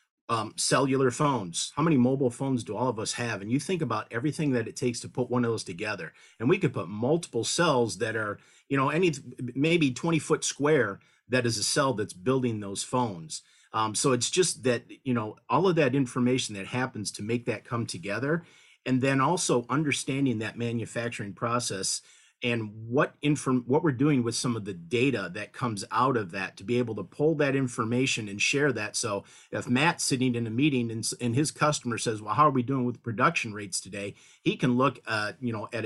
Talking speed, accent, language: 215 wpm, American, English